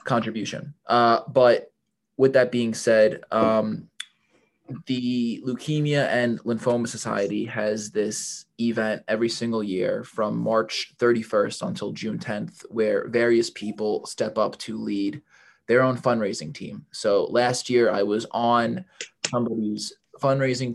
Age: 20-39